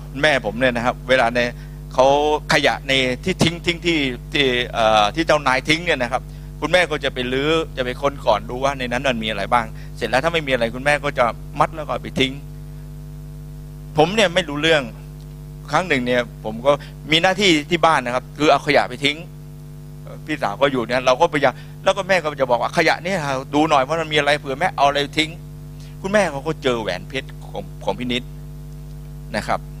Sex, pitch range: male, 130-150 Hz